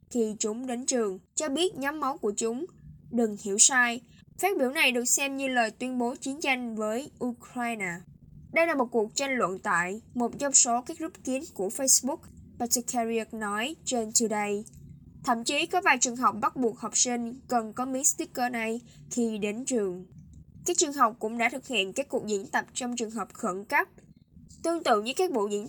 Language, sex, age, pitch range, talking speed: Vietnamese, female, 10-29, 220-265 Hz, 200 wpm